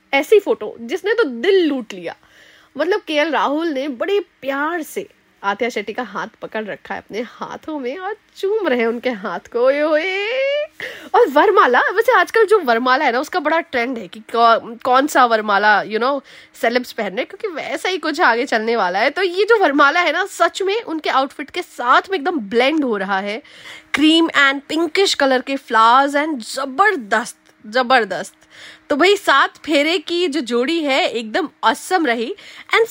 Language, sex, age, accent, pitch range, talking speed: Hindi, female, 20-39, native, 245-365 Hz, 185 wpm